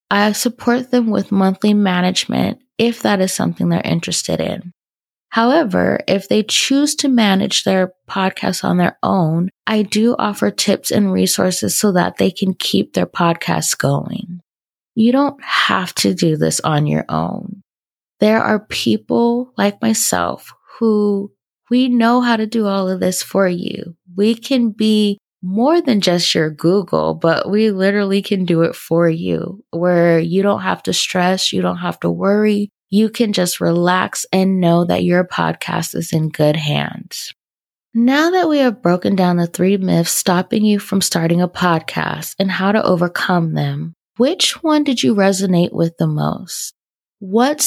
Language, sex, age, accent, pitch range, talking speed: English, female, 20-39, American, 175-220 Hz, 165 wpm